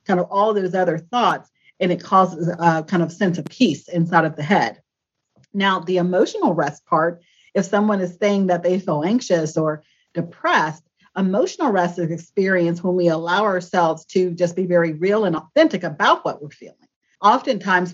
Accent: American